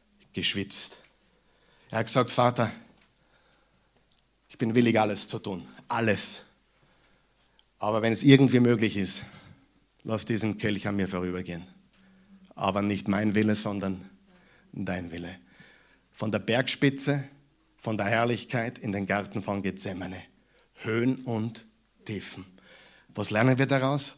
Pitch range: 105-150 Hz